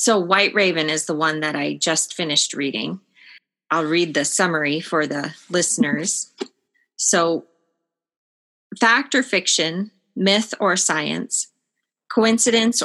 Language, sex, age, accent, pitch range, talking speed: English, female, 30-49, American, 170-205 Hz, 120 wpm